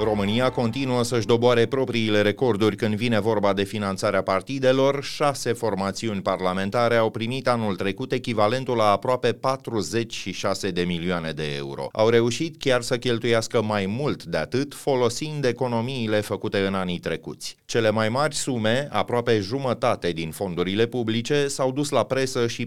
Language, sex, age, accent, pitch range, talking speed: Romanian, male, 30-49, native, 100-130 Hz, 150 wpm